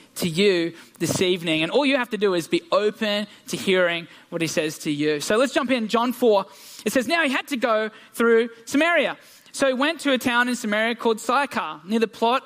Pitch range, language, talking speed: 200-265 Hz, English, 230 wpm